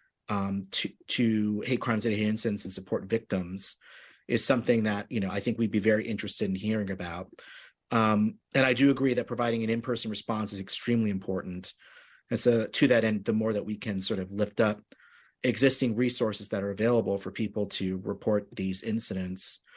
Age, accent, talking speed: 30-49, American, 190 wpm